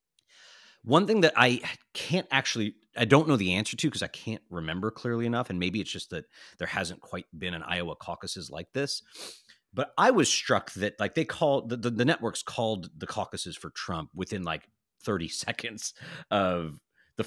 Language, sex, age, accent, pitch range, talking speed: English, male, 30-49, American, 90-120 Hz, 190 wpm